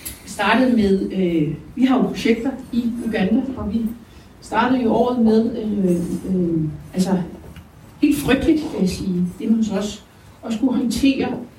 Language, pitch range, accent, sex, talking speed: Danish, 195-245 Hz, native, female, 140 wpm